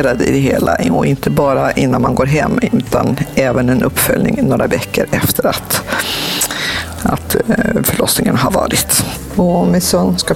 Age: 50-69